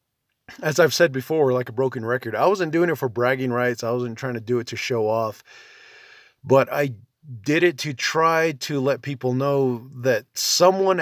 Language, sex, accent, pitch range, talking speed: English, male, American, 120-140 Hz, 195 wpm